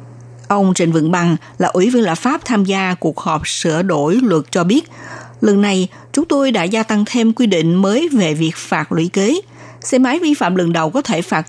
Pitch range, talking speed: 165-230 Hz, 225 wpm